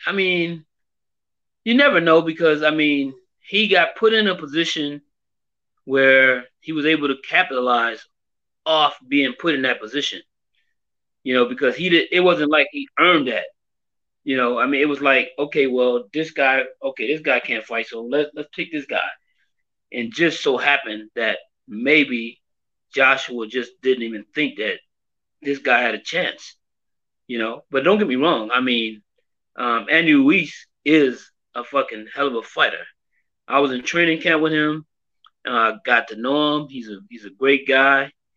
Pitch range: 125-155 Hz